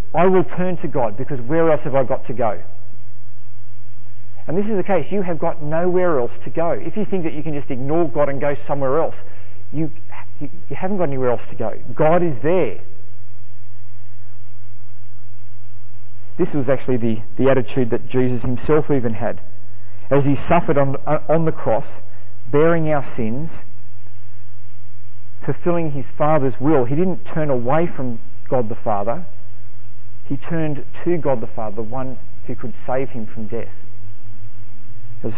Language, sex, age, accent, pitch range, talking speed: English, male, 40-59, Australian, 100-145 Hz, 165 wpm